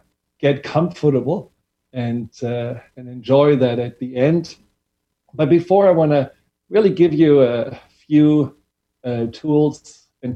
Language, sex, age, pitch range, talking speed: English, male, 40-59, 120-140 Hz, 135 wpm